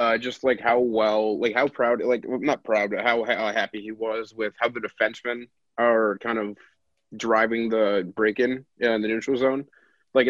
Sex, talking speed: male, 200 wpm